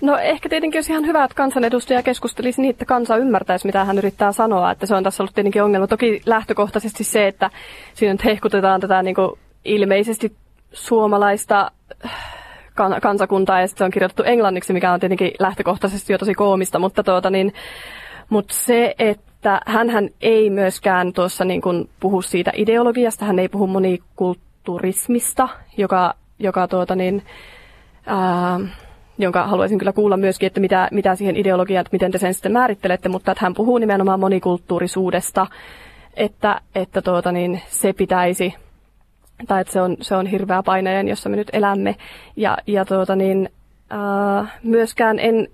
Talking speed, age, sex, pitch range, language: 155 wpm, 20-39, female, 185-215 Hz, Finnish